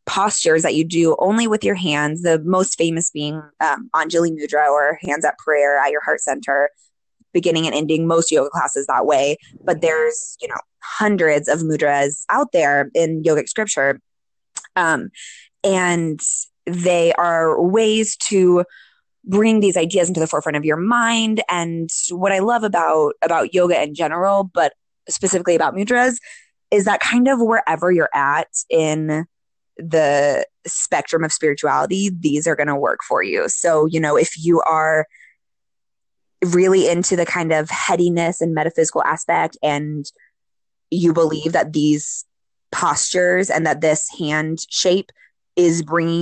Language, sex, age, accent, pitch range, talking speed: English, female, 20-39, American, 155-190 Hz, 155 wpm